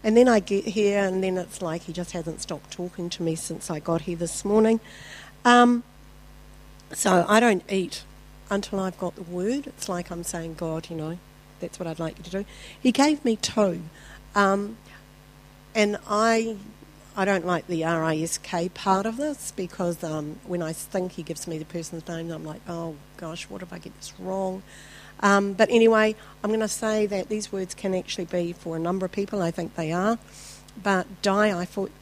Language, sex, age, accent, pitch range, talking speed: English, female, 50-69, Australian, 165-200 Hz, 200 wpm